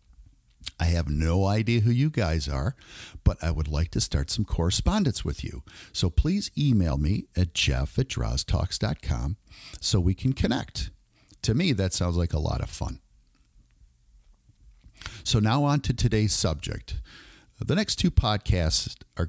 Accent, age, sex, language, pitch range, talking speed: American, 50-69, male, English, 75-100 Hz, 155 wpm